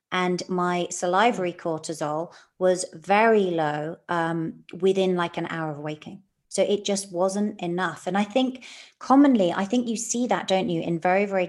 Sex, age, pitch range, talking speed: female, 30-49, 170-210 Hz, 170 wpm